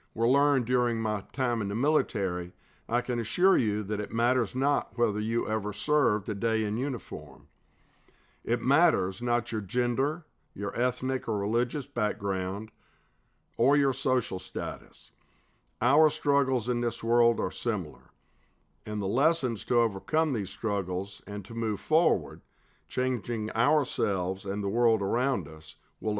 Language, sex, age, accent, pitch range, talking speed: English, male, 50-69, American, 105-130 Hz, 145 wpm